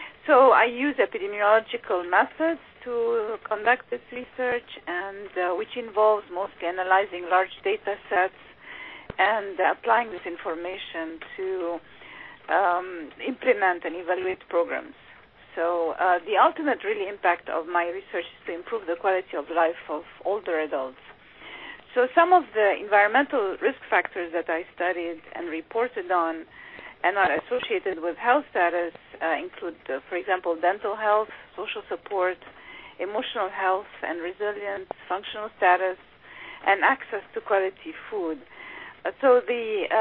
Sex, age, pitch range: female, 40-59, 175-245 Hz